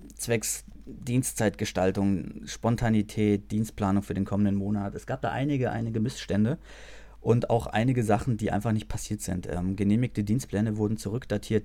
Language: German